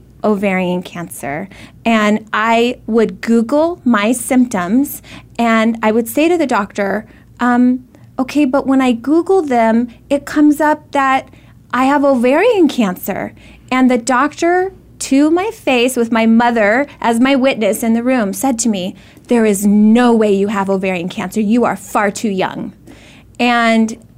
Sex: female